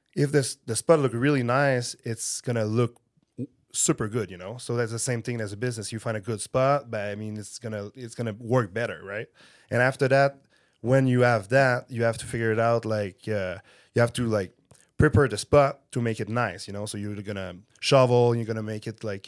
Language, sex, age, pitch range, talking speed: English, male, 20-39, 110-125 Hz, 230 wpm